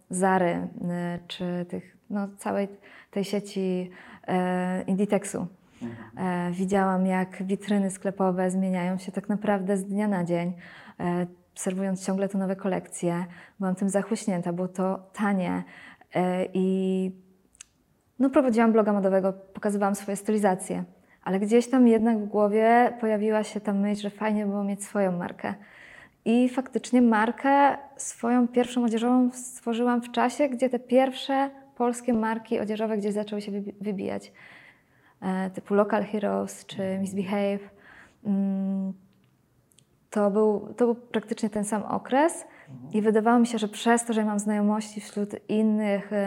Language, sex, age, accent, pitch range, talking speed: Polish, female, 20-39, native, 190-225 Hz, 130 wpm